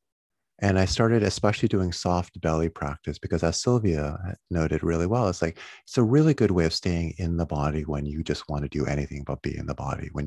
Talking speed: 230 wpm